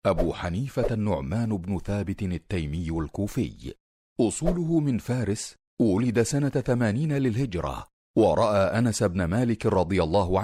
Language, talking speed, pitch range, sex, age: Arabic, 115 wpm, 100-130 Hz, male, 40-59